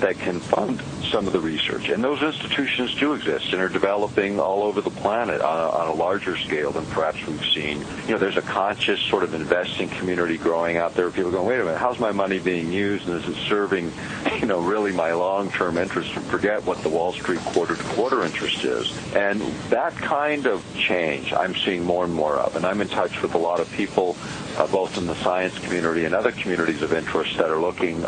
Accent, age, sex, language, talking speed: American, 50-69, male, English, 225 wpm